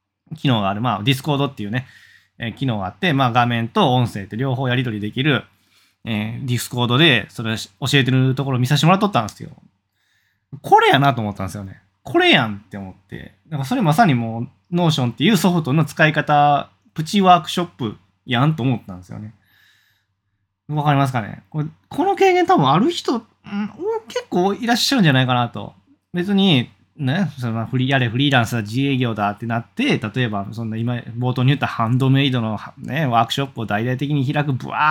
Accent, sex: native, male